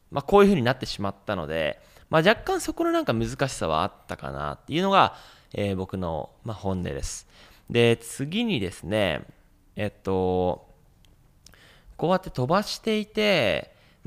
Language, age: Japanese, 20-39